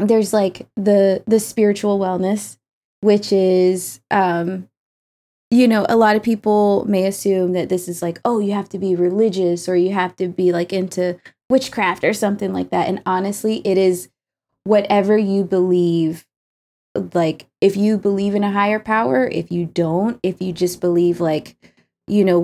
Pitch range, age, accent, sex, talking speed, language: 175-205 Hz, 20-39, American, female, 170 wpm, English